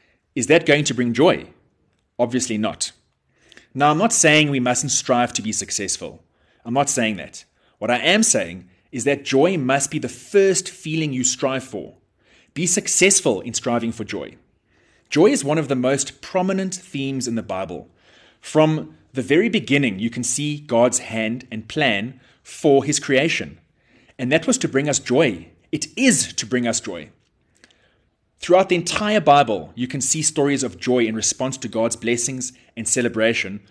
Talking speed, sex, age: 175 wpm, male, 30-49